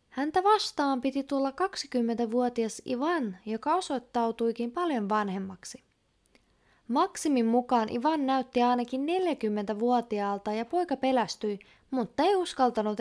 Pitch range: 225-300 Hz